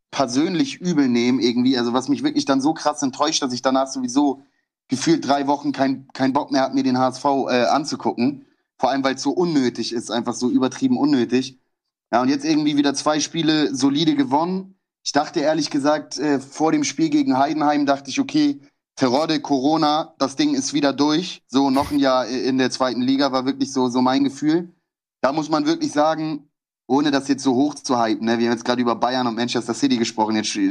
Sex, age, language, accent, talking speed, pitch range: male, 30-49, German, German, 210 wpm, 130-165 Hz